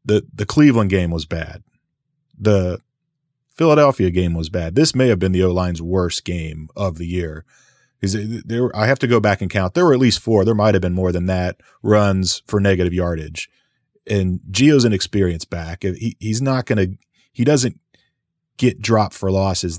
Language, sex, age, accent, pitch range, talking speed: English, male, 30-49, American, 90-115 Hz, 190 wpm